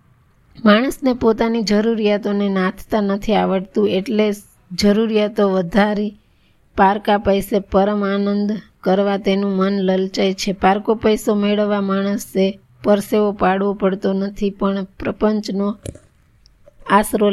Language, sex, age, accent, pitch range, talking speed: Gujarati, female, 20-39, native, 195-215 Hz, 100 wpm